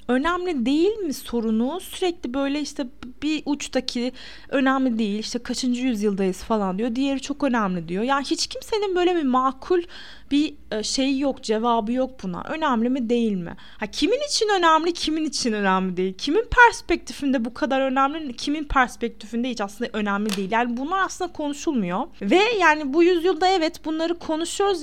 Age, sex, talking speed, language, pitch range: 30-49, female, 160 wpm, Turkish, 225-295 Hz